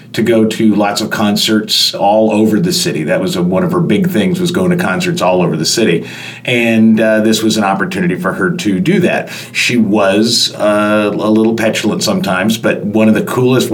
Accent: American